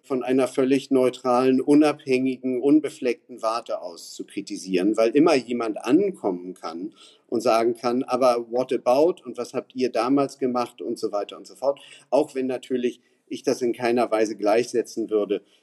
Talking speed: 165 wpm